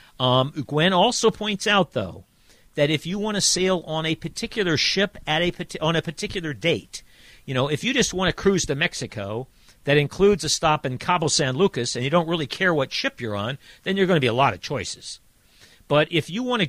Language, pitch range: English, 125-175 Hz